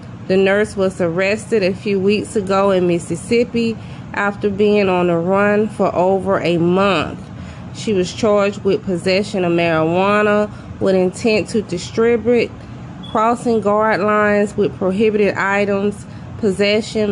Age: 20-39